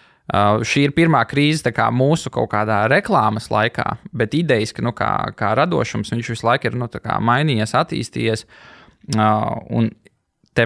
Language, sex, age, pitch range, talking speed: English, male, 20-39, 110-135 Hz, 165 wpm